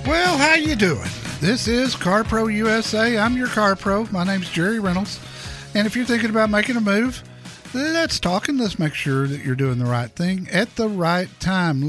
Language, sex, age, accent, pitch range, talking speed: English, male, 50-69, American, 135-190 Hz, 205 wpm